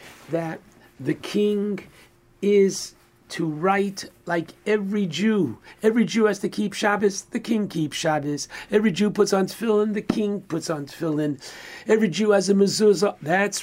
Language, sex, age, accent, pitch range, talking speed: English, male, 60-79, American, 175-205 Hz, 155 wpm